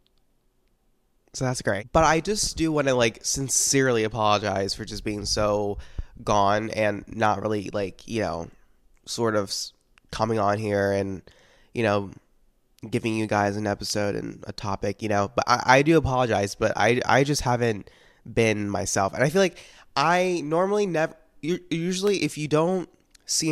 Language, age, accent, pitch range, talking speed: English, 20-39, American, 105-125 Hz, 165 wpm